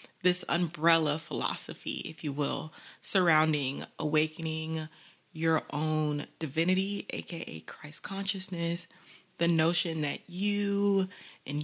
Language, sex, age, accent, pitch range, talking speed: English, female, 20-39, American, 160-195 Hz, 100 wpm